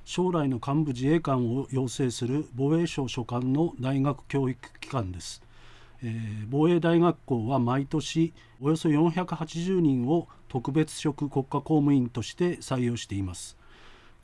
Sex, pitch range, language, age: male, 120-160 Hz, Japanese, 40-59